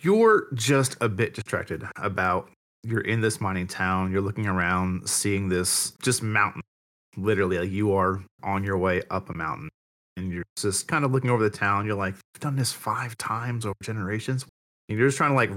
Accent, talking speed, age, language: American, 195 wpm, 30-49, English